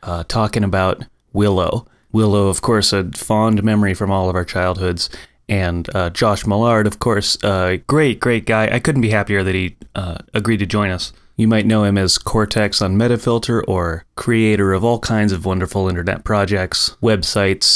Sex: male